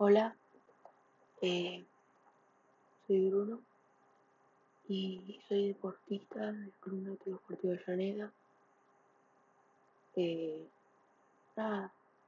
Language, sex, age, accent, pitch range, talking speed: Spanish, female, 20-39, Spanish, 180-200 Hz, 70 wpm